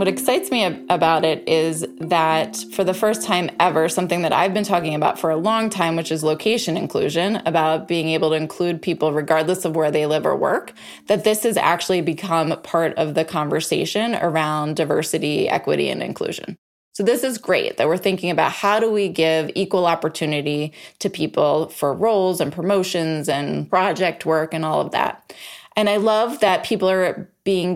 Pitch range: 160-195 Hz